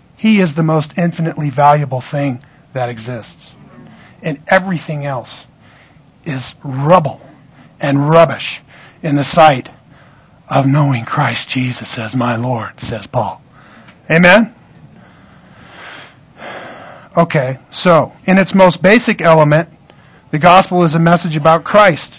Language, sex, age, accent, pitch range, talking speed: English, male, 50-69, American, 150-220 Hz, 115 wpm